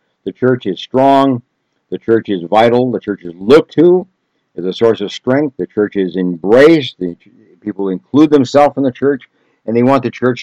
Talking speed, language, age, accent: 195 wpm, English, 60-79, American